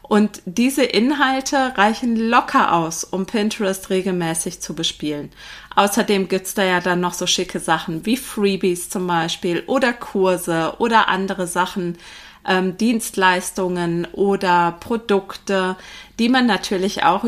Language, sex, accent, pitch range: German, female, German, 180-225 Hz